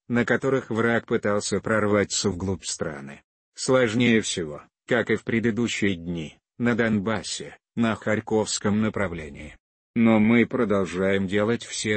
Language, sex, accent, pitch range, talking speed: Russian, male, native, 100-115 Hz, 120 wpm